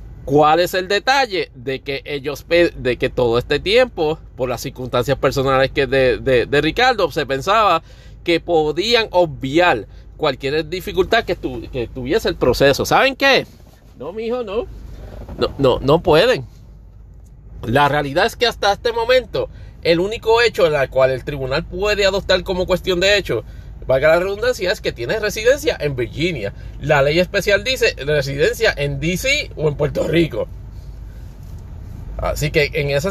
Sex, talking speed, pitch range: male, 160 wpm, 135-205 Hz